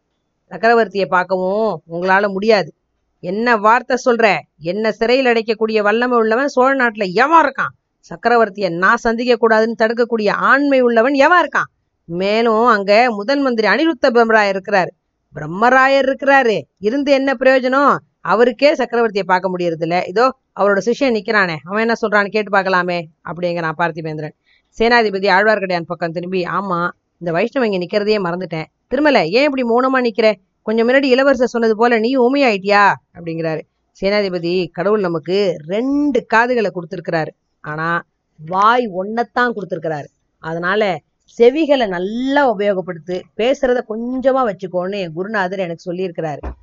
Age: 30-49